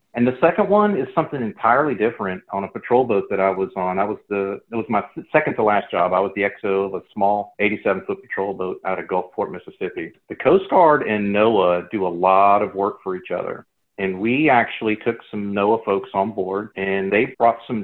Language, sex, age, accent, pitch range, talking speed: English, male, 40-59, American, 95-105 Hz, 225 wpm